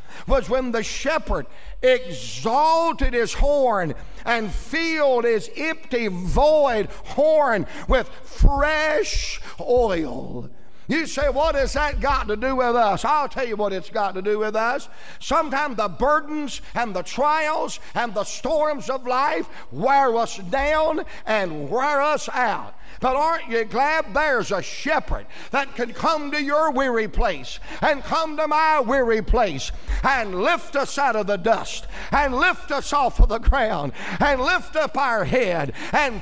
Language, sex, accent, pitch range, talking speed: English, male, American, 240-305 Hz, 155 wpm